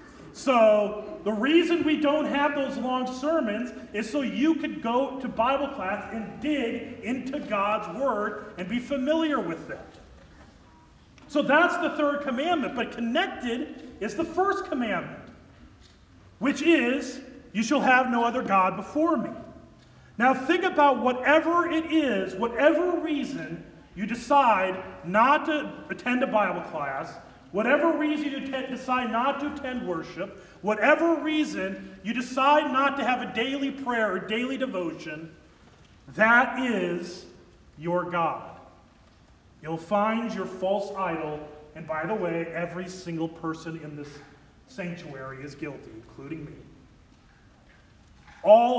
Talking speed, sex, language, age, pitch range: 135 wpm, male, English, 40-59, 185-280 Hz